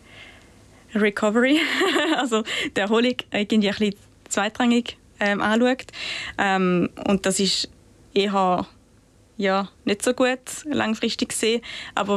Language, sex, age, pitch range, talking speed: German, female, 20-39, 185-210 Hz, 100 wpm